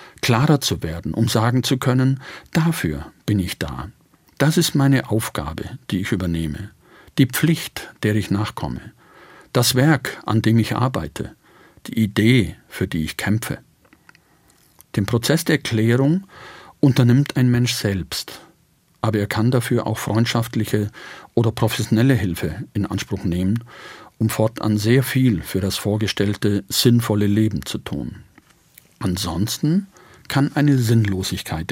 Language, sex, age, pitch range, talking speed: German, male, 50-69, 105-140 Hz, 130 wpm